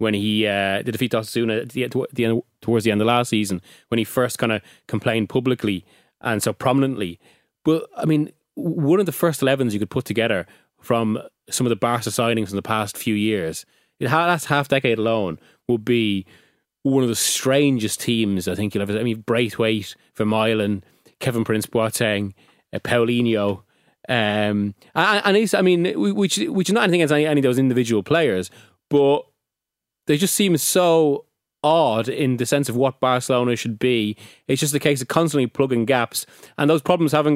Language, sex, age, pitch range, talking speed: English, male, 20-39, 110-145 Hz, 180 wpm